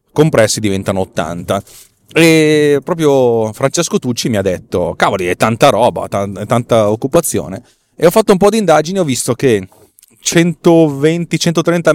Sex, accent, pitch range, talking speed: male, native, 100-125 Hz, 145 wpm